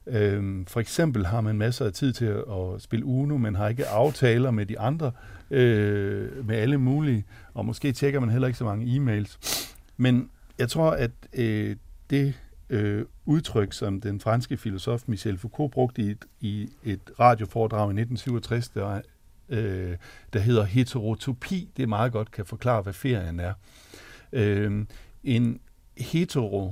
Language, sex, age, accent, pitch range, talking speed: Danish, male, 60-79, native, 105-130 Hz, 155 wpm